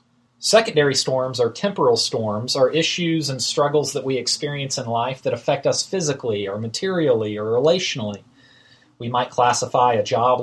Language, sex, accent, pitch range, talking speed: English, male, American, 125-150 Hz, 155 wpm